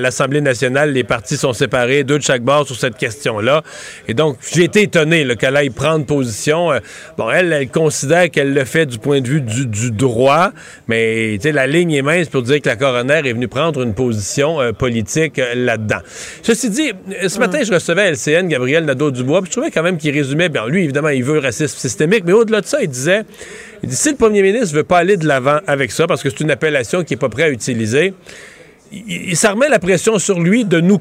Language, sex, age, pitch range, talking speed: French, male, 40-59, 140-180 Hz, 230 wpm